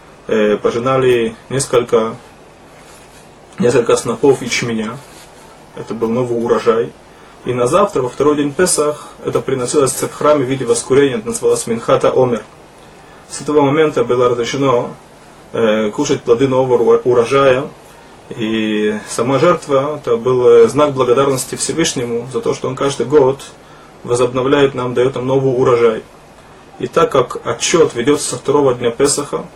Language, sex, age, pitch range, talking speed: Russian, male, 20-39, 125-160 Hz, 130 wpm